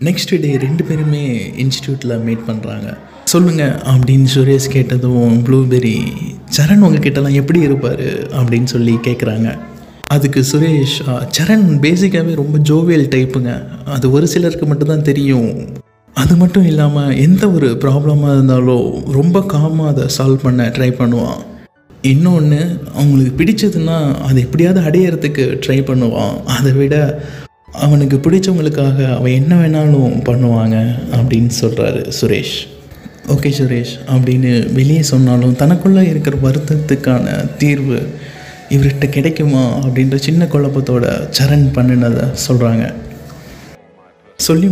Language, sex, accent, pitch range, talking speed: Tamil, male, native, 130-155 Hz, 110 wpm